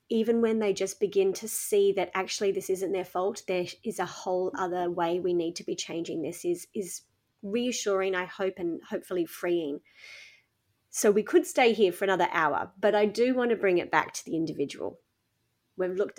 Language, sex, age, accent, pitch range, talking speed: English, female, 30-49, Australian, 180-260 Hz, 200 wpm